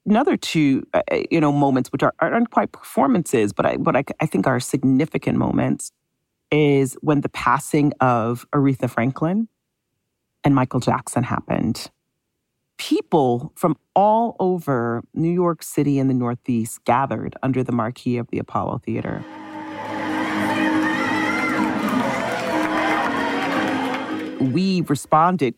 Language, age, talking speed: English, 40-59, 115 wpm